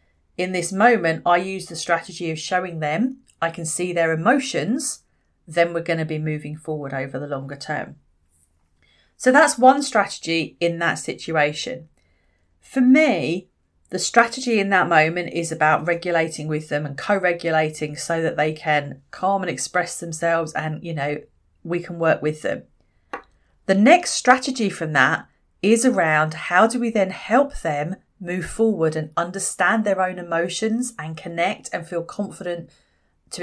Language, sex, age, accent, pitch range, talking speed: English, female, 40-59, British, 155-210 Hz, 160 wpm